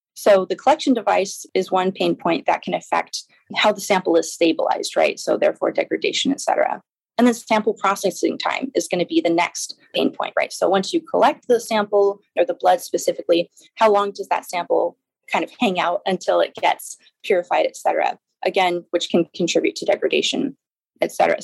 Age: 20-39